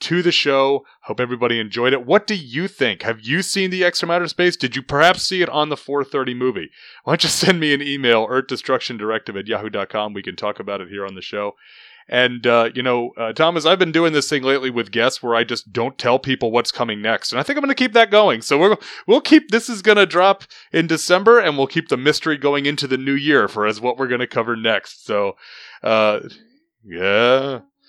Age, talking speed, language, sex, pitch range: 30-49, 235 wpm, English, male, 110-150 Hz